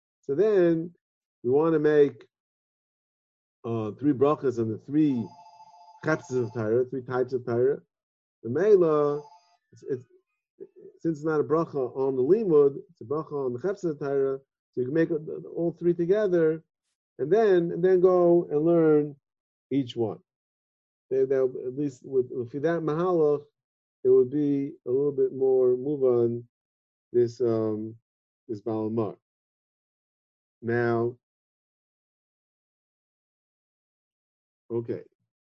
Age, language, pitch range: 50-69, English, 110-160 Hz